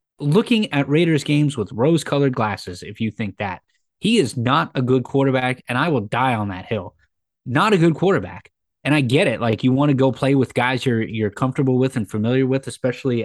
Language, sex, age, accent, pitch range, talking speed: English, male, 20-39, American, 105-135 Hz, 220 wpm